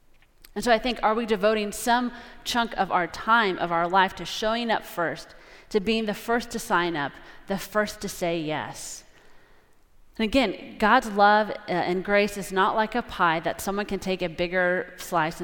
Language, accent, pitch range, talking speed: English, American, 185-230 Hz, 190 wpm